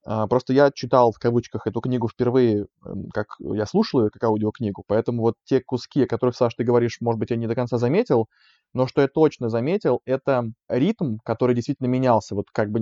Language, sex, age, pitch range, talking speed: Russian, male, 20-39, 115-135 Hz, 195 wpm